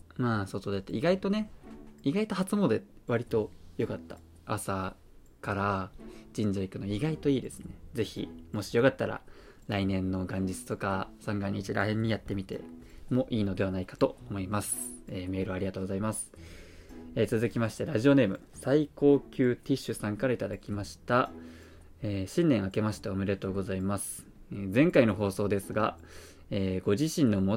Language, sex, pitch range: Japanese, male, 95-120 Hz